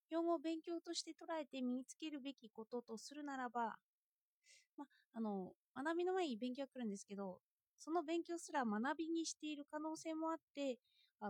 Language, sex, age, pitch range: Japanese, female, 20-39, 220-320 Hz